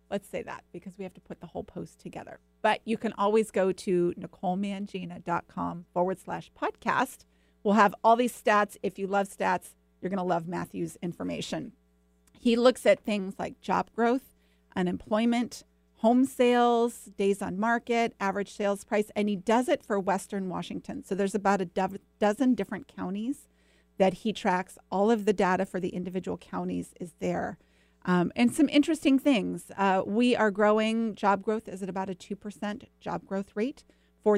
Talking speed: 175 wpm